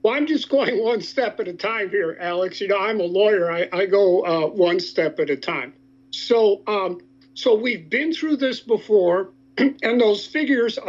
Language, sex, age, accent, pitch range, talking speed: English, male, 50-69, American, 180-240 Hz, 200 wpm